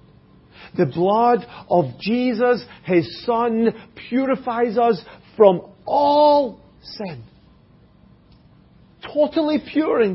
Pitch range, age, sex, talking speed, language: 160-245 Hz, 50-69, male, 85 wpm, English